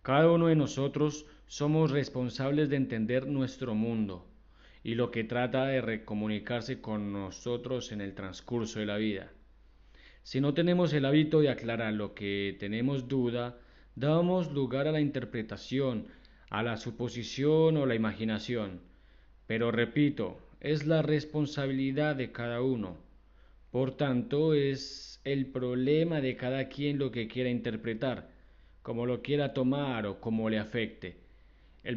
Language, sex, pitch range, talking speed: Spanish, male, 100-140 Hz, 140 wpm